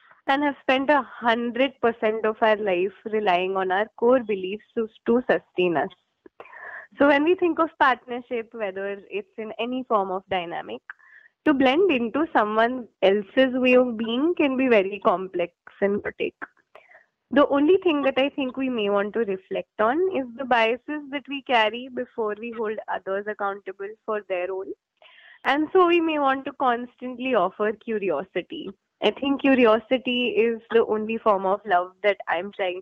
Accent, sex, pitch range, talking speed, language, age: Indian, female, 205-270 Hz, 170 wpm, English, 20-39